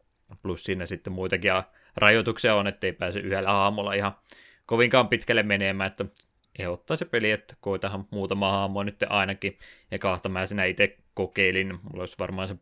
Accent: native